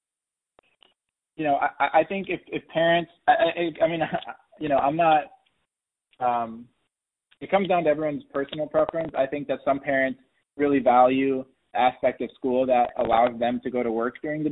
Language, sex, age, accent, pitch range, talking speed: English, male, 20-39, American, 120-140 Hz, 180 wpm